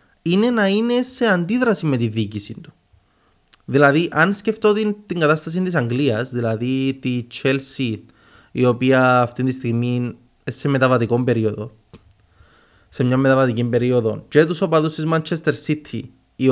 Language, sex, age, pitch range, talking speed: Greek, male, 20-39, 115-155 Hz, 135 wpm